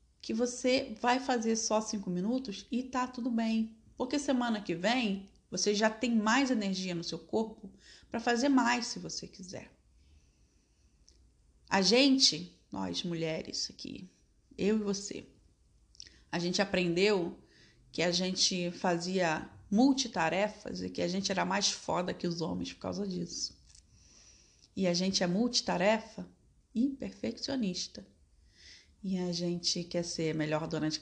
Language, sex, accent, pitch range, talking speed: Portuguese, female, Brazilian, 170-225 Hz, 145 wpm